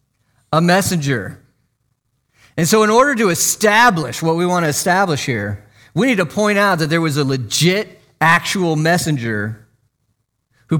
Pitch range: 125-165 Hz